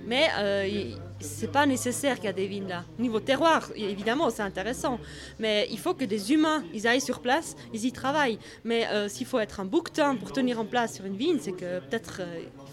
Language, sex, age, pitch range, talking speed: French, female, 20-39, 215-265 Hz, 235 wpm